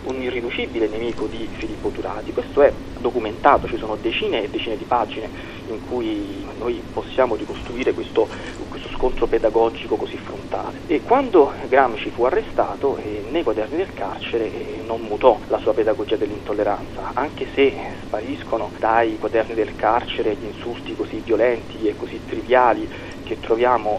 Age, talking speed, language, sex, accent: 30-49, 150 wpm, Italian, male, native